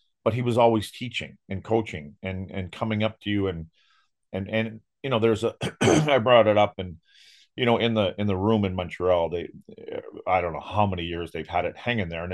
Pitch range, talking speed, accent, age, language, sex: 95-115 Hz, 230 wpm, American, 40-59, English, male